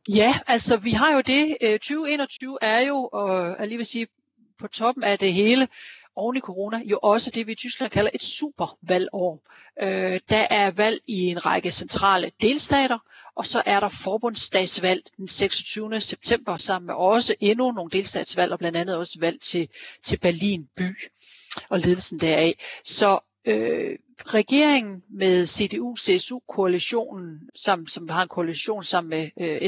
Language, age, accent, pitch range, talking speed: Danish, 40-59, native, 185-230 Hz, 150 wpm